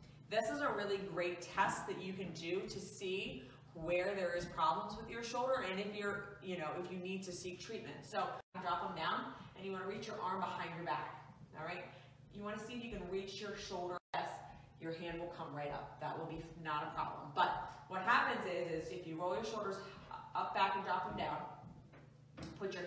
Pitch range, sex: 165-195 Hz, female